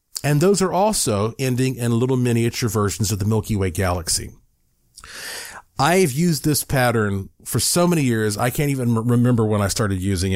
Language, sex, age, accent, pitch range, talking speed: English, male, 40-59, American, 100-130 Hz, 175 wpm